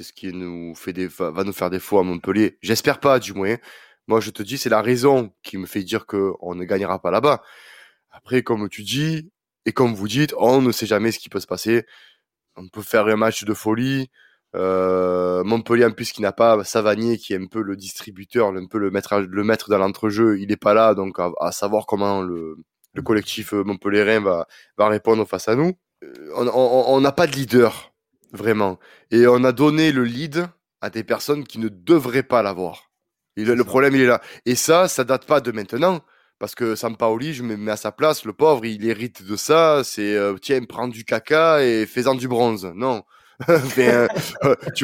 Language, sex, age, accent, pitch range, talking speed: French, male, 20-39, French, 100-130 Hz, 215 wpm